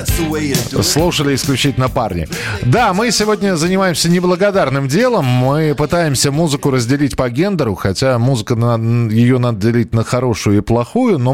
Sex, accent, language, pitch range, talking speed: male, native, Russian, 110-150 Hz, 130 wpm